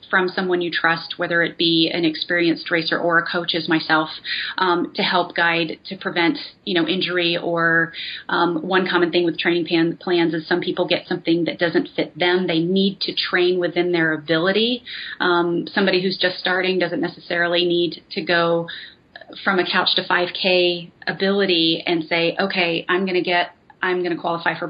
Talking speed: 185 wpm